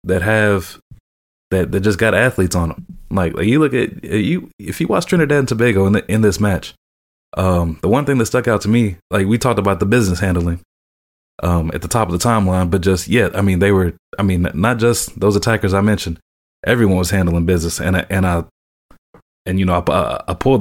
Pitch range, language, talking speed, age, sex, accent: 85-105 Hz, English, 225 wpm, 20-39, male, American